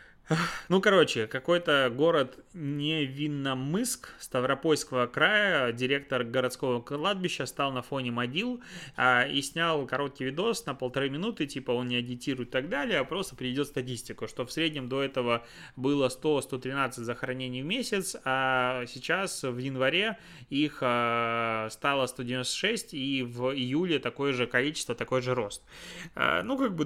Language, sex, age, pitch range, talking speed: Russian, male, 20-39, 125-150 Hz, 135 wpm